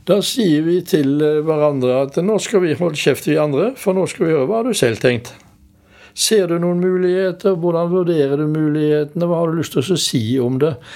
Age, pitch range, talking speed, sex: 60-79, 130-165 Hz, 220 wpm, male